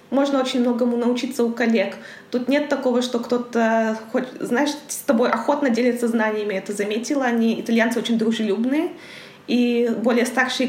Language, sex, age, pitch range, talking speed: Russian, female, 20-39, 220-250 Hz, 150 wpm